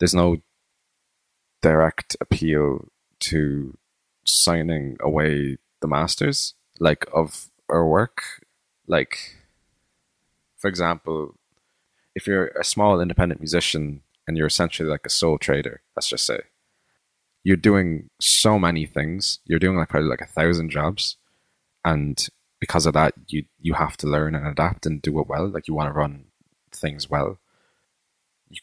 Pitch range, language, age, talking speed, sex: 75-90 Hz, English, 20-39, 145 wpm, male